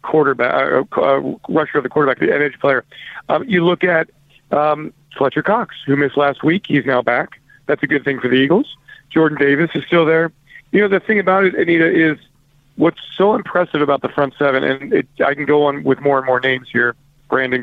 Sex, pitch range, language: male, 140-160 Hz, English